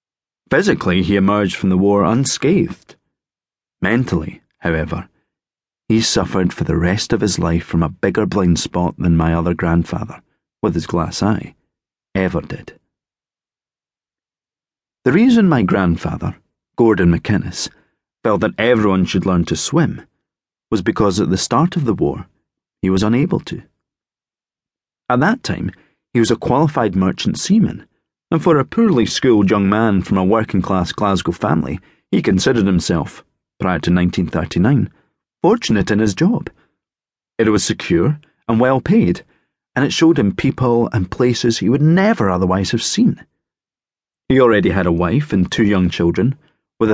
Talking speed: 150 wpm